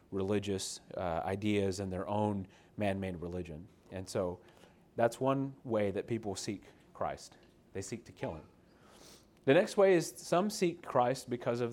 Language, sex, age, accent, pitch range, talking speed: English, male, 30-49, American, 100-125 Hz, 160 wpm